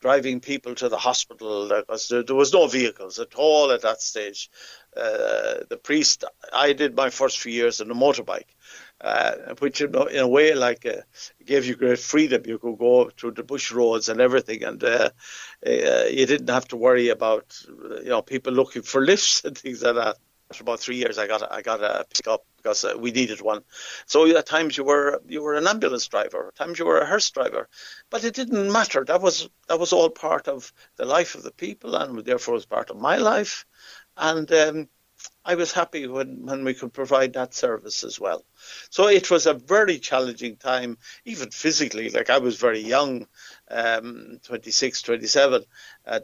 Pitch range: 125-205 Hz